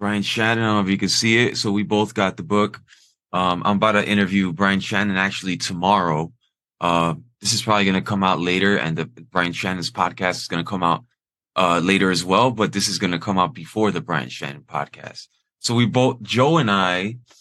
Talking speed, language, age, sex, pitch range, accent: 230 wpm, English, 20-39, male, 95-115 Hz, American